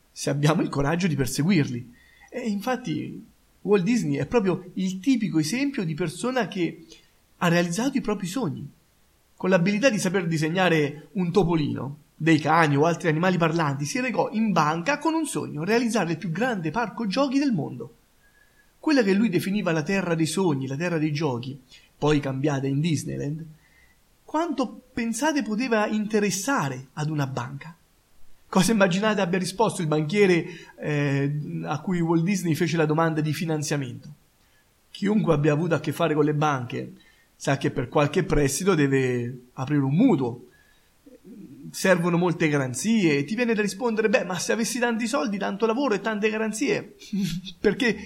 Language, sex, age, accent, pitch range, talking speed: Italian, male, 30-49, native, 150-215 Hz, 160 wpm